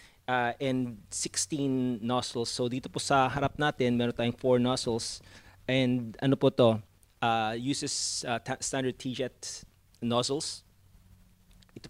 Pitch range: 110-140 Hz